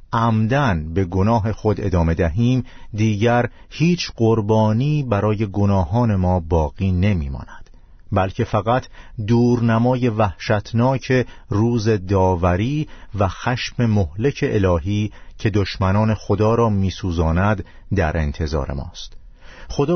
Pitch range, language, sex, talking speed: 95-120 Hz, Persian, male, 100 wpm